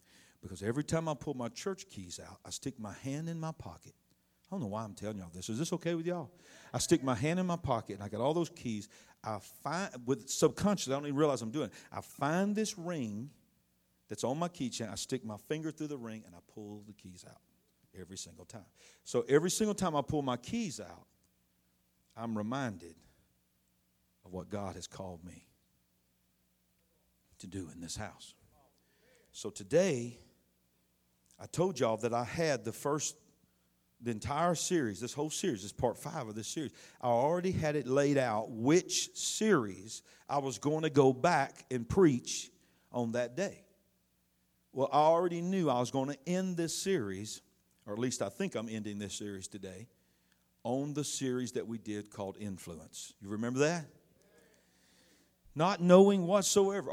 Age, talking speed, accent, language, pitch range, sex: 50-69, 185 wpm, American, English, 95-155 Hz, male